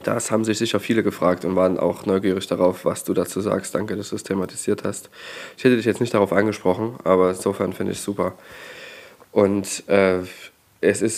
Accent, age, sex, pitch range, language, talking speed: German, 20-39, male, 95-115 Hz, German, 205 wpm